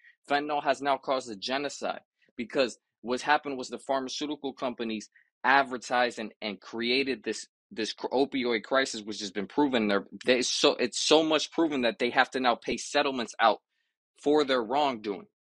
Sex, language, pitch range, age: male, English, 115-155 Hz, 20-39